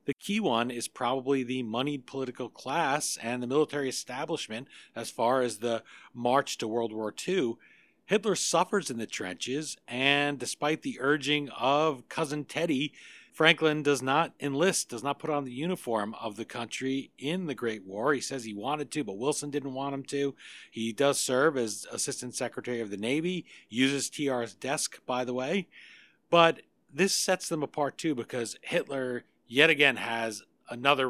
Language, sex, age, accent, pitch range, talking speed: English, male, 40-59, American, 115-145 Hz, 170 wpm